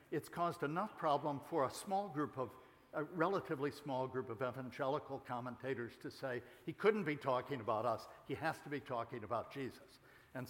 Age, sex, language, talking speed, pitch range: 60-79, male, English, 185 wpm, 125-160 Hz